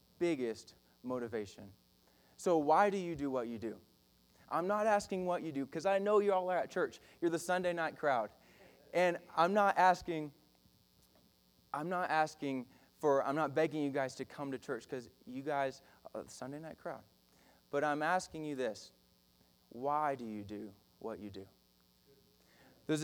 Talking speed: 175 wpm